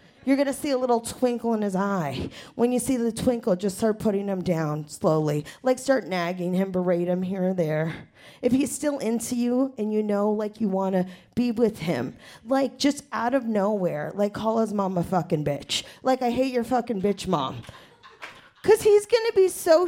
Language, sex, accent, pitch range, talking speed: English, female, American, 200-295 Hz, 200 wpm